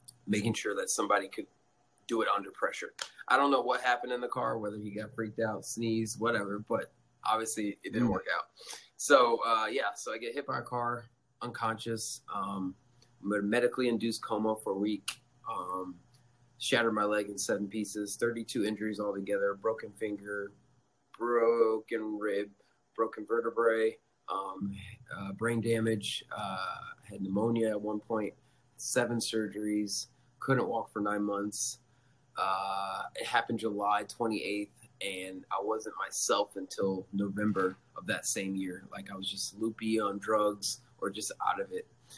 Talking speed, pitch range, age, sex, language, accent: 155 wpm, 100-120 Hz, 20-39, male, English, American